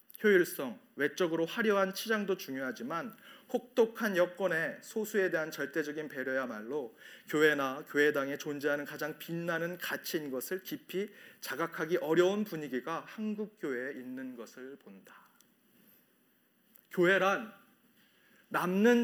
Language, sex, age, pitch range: Korean, male, 40-59, 165-225 Hz